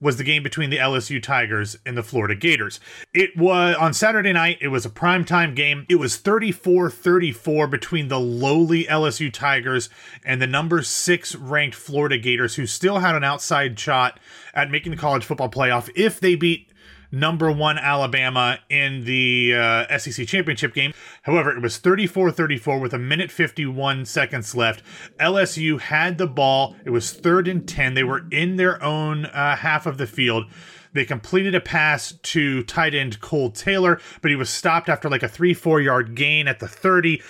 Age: 30-49